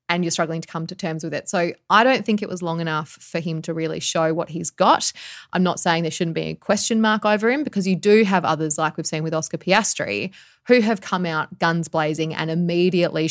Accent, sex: Australian, female